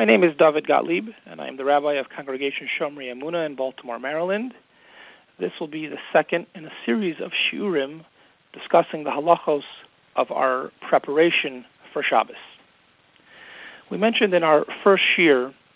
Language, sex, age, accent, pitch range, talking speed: English, male, 40-59, American, 145-180 Hz, 155 wpm